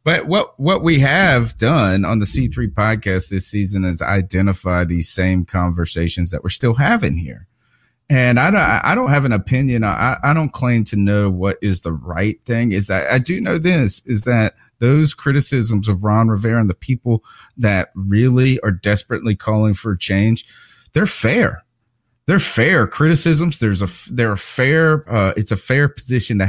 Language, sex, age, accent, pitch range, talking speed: English, male, 30-49, American, 95-120 Hz, 180 wpm